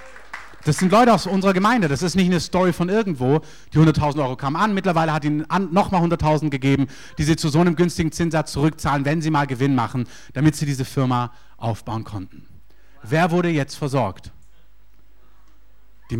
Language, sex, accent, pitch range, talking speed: German, male, German, 130-175 Hz, 180 wpm